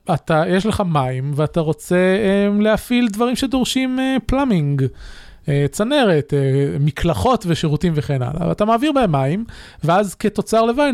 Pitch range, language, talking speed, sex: 150-210 Hz, Hebrew, 145 wpm, male